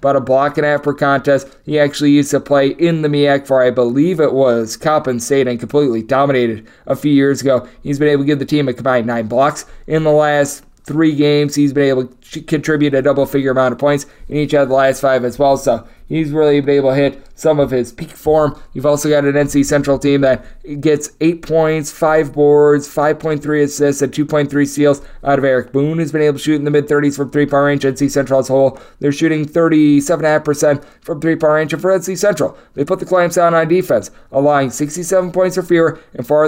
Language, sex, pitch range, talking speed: English, male, 140-155 Hz, 225 wpm